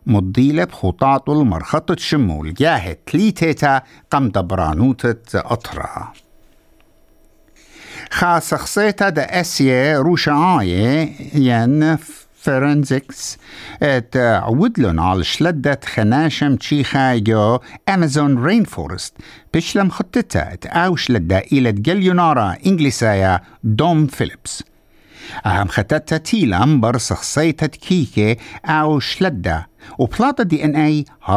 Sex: male